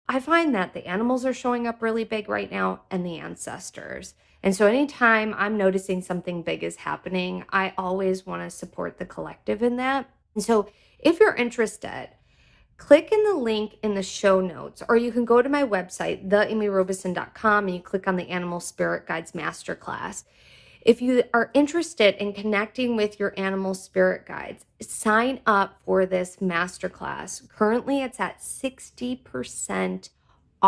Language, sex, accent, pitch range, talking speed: English, female, American, 185-230 Hz, 160 wpm